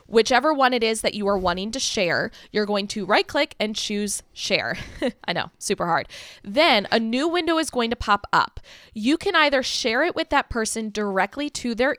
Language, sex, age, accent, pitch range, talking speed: English, female, 20-39, American, 195-250 Hz, 210 wpm